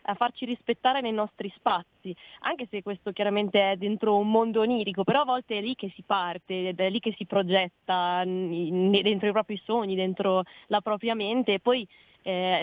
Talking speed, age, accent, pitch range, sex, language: 185 wpm, 20-39, native, 190-230 Hz, female, Italian